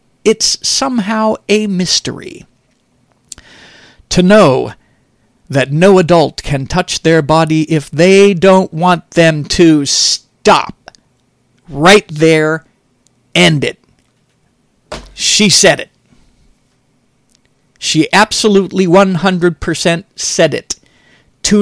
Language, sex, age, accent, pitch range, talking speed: English, male, 50-69, American, 135-190 Hz, 90 wpm